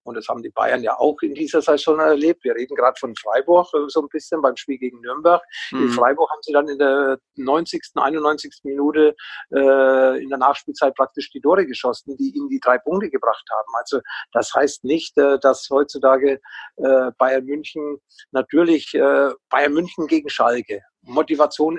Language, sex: German, male